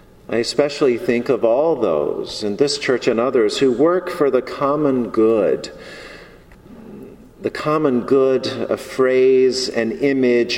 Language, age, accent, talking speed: English, 40-59, American, 135 wpm